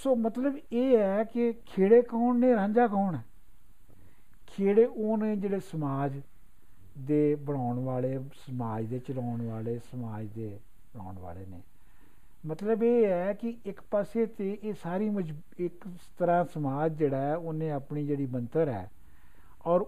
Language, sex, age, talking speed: Punjabi, male, 60-79, 145 wpm